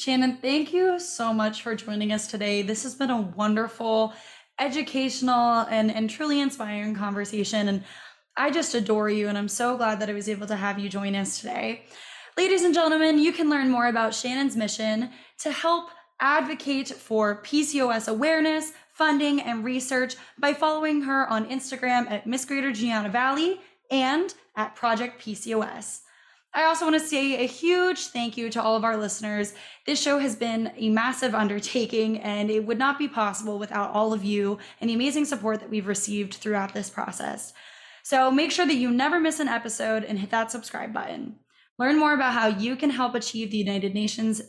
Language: English